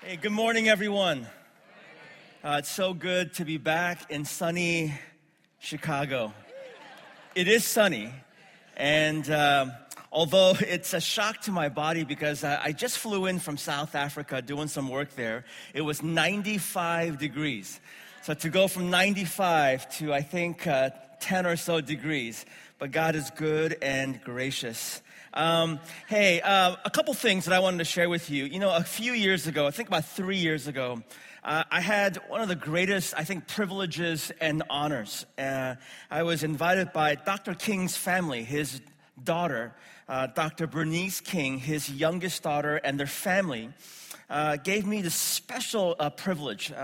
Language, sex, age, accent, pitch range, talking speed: English, male, 30-49, American, 145-185 Hz, 160 wpm